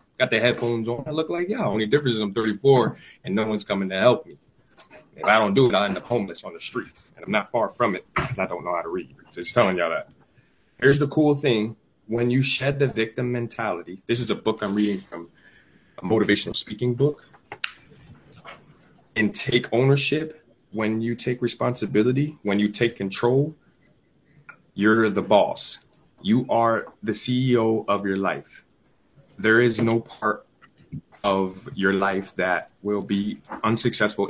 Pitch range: 100-120 Hz